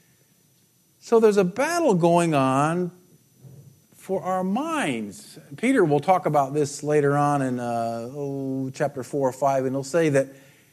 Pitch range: 140-190 Hz